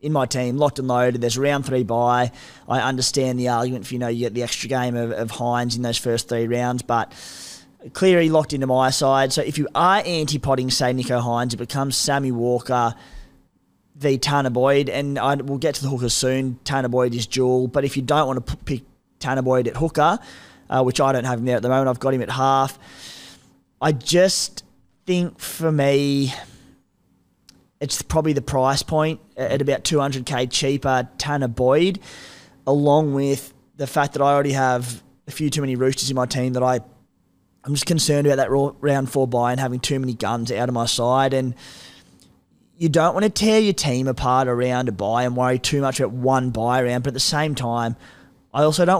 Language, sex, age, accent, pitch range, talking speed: English, male, 20-39, Australian, 120-140 Hz, 210 wpm